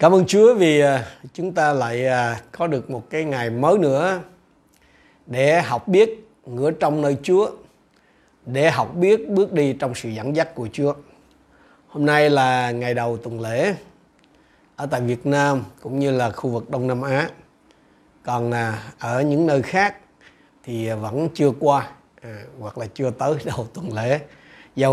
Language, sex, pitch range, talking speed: Vietnamese, male, 125-155 Hz, 165 wpm